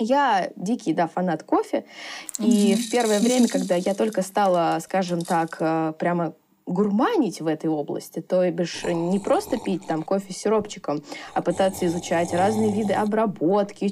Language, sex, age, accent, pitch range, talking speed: Russian, female, 20-39, native, 180-250 Hz, 155 wpm